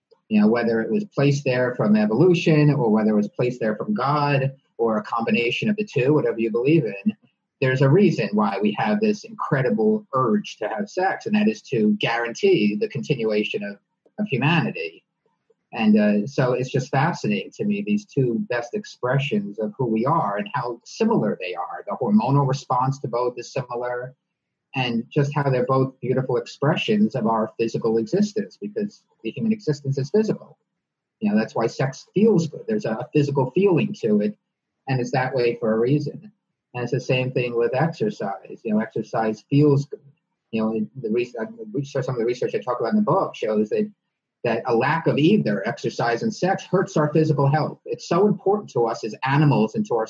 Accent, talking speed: American, 195 wpm